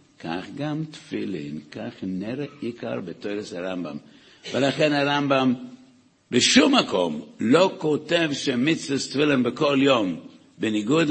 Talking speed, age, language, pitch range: 110 wpm, 60-79, Hebrew, 95-145 Hz